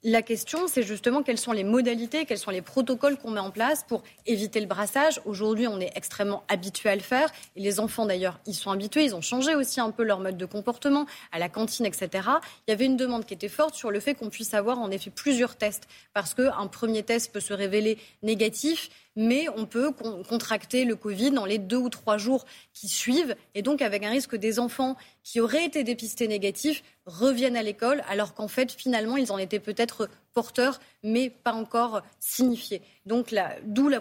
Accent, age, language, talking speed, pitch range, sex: French, 20-39, French, 215 wpm, 210-260 Hz, female